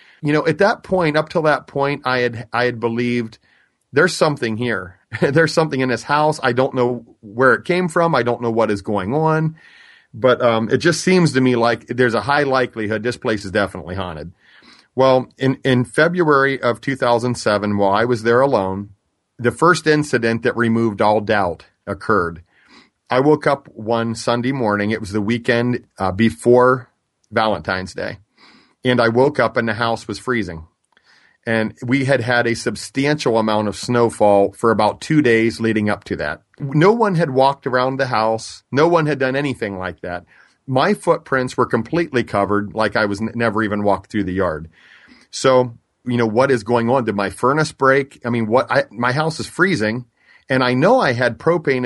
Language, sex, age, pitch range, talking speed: English, male, 40-59, 110-135 Hz, 190 wpm